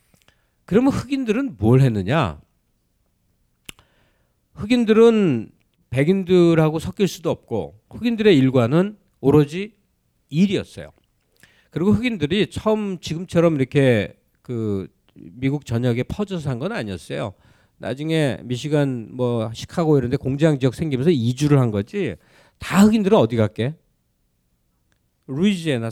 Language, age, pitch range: Korean, 40-59, 110-165 Hz